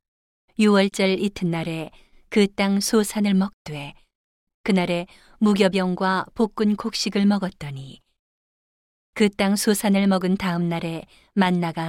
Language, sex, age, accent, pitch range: Korean, female, 40-59, native, 175-205 Hz